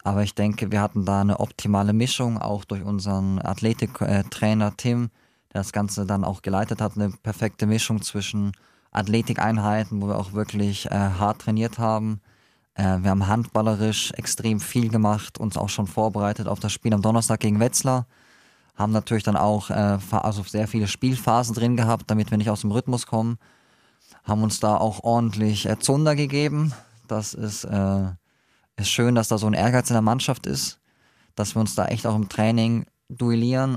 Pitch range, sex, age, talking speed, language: 105-115 Hz, male, 20-39, 180 wpm, German